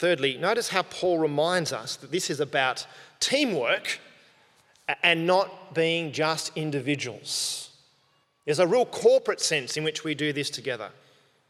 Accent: Australian